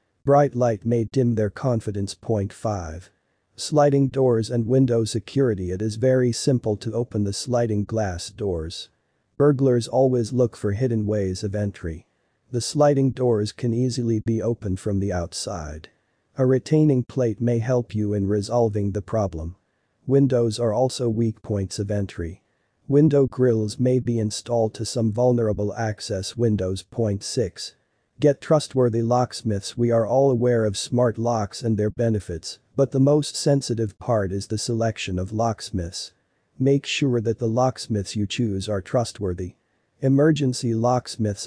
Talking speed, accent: 150 wpm, American